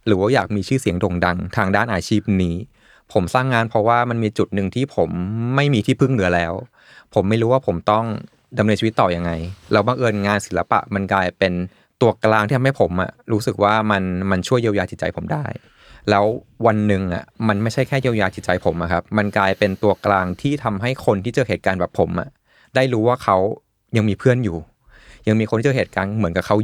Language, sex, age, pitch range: Thai, male, 20-39, 95-120 Hz